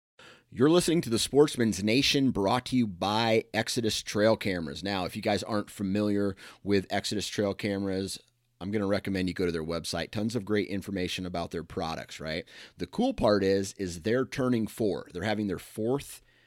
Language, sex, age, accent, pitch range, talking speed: English, male, 30-49, American, 90-110 Hz, 190 wpm